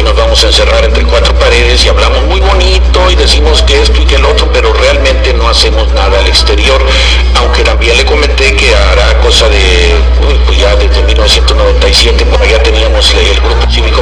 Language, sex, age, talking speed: English, male, 50-69, 165 wpm